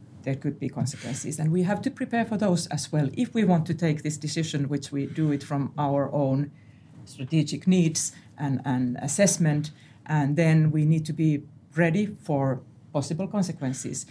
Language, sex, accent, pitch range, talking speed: English, female, Finnish, 140-165 Hz, 180 wpm